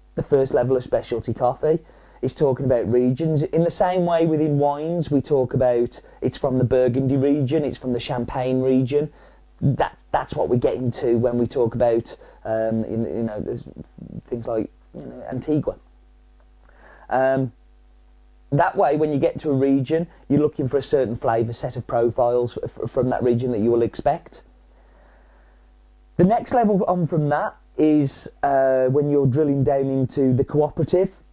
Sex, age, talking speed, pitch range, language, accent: male, 30-49, 170 wpm, 115-140 Hz, English, British